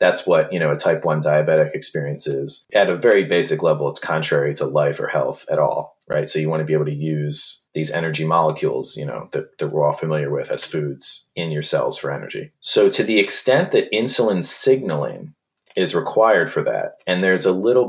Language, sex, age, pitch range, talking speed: English, male, 30-49, 75-90 Hz, 220 wpm